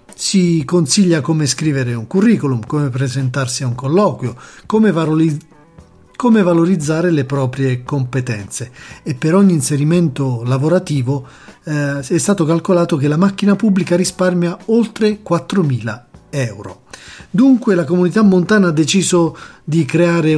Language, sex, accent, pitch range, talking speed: Italian, male, native, 135-180 Hz, 120 wpm